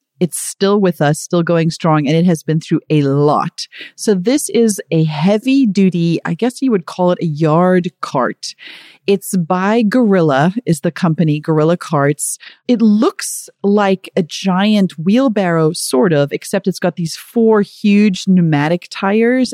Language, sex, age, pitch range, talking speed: English, female, 30-49, 165-205 Hz, 160 wpm